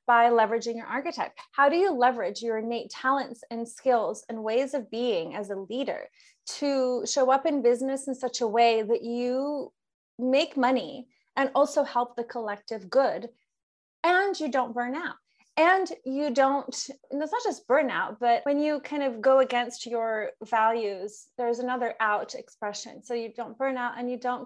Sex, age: female, 30-49